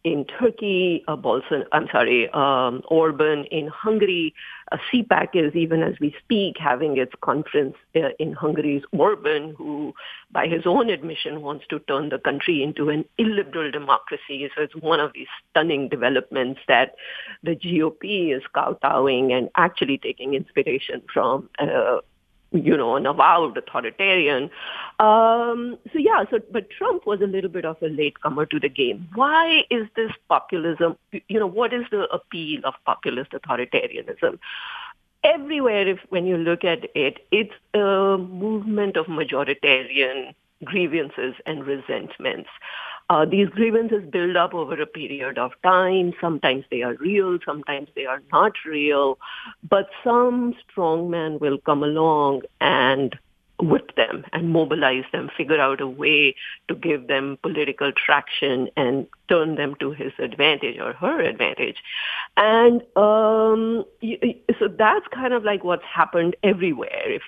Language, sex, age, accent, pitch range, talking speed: English, female, 50-69, Indian, 150-225 Hz, 145 wpm